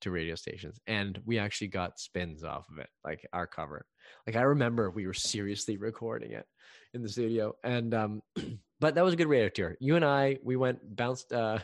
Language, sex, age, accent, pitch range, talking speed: English, male, 20-39, American, 90-120 Hz, 210 wpm